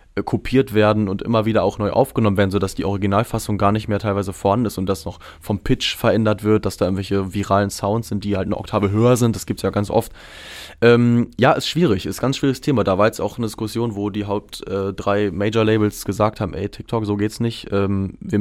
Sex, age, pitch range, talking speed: male, 20-39, 100-110 Hz, 230 wpm